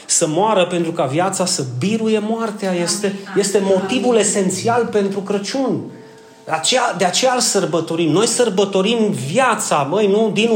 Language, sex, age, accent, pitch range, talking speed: Romanian, male, 30-49, native, 180-230 Hz, 150 wpm